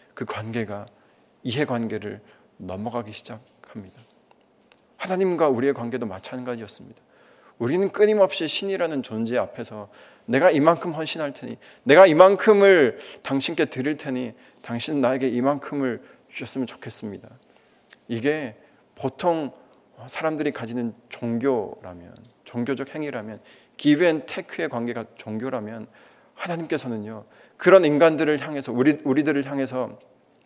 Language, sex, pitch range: Korean, male, 115-150 Hz